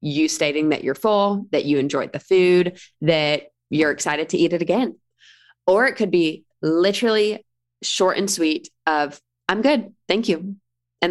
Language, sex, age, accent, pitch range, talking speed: English, female, 20-39, American, 145-175 Hz, 165 wpm